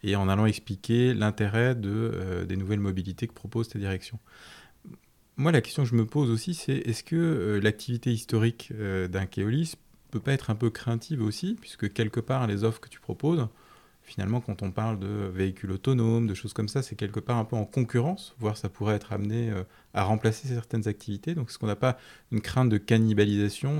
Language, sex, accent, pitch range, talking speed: French, male, French, 100-125 Hz, 210 wpm